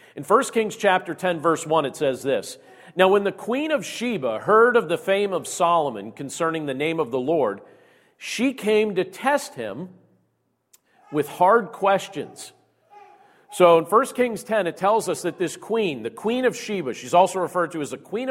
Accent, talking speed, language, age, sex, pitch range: American, 190 wpm, English, 40-59, male, 155-215 Hz